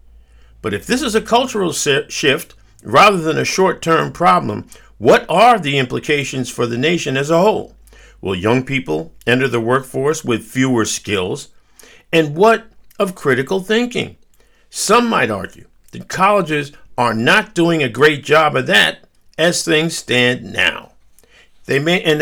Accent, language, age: American, English, 50-69